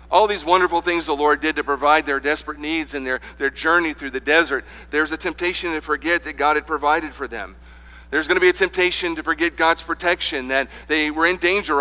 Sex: male